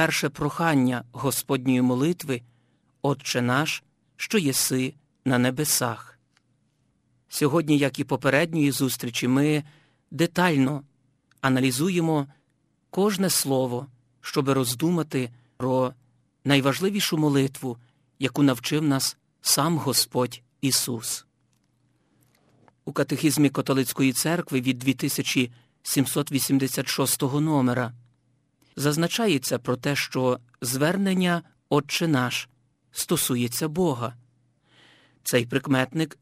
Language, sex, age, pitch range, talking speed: Ukrainian, male, 50-69, 130-160 Hz, 85 wpm